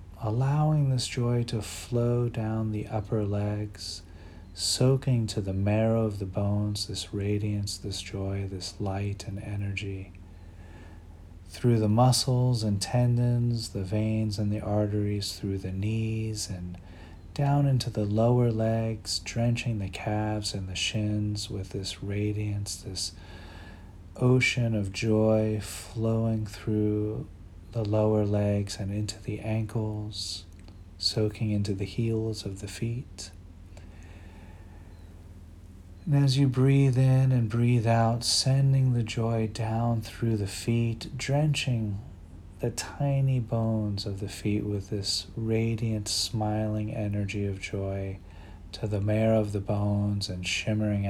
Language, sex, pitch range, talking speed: English, male, 95-110 Hz, 130 wpm